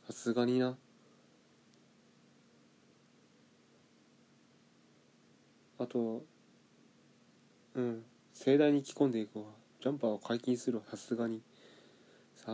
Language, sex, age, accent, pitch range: Japanese, male, 20-39, native, 110-140 Hz